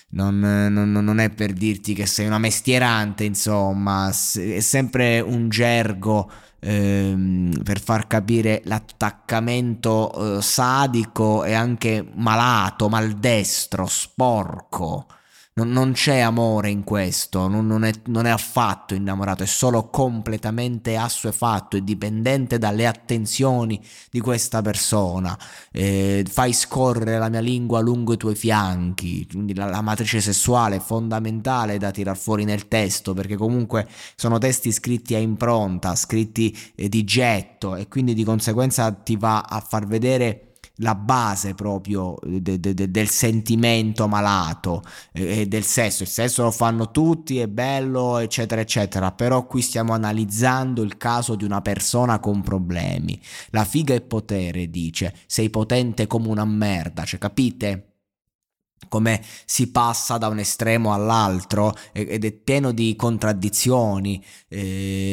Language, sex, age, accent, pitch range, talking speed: Italian, male, 20-39, native, 100-115 Hz, 135 wpm